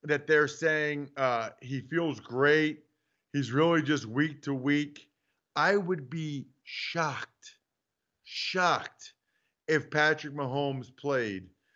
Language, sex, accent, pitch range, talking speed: English, male, American, 130-150 Hz, 110 wpm